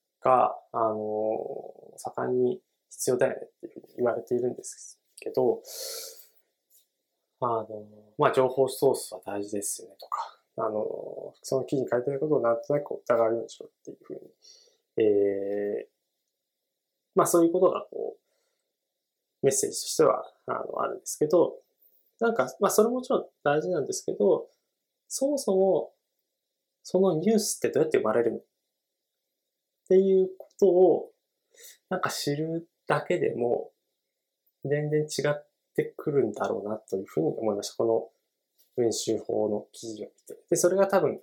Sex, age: male, 20-39